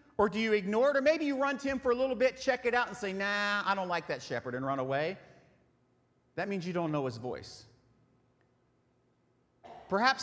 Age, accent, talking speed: 40-59, American, 215 wpm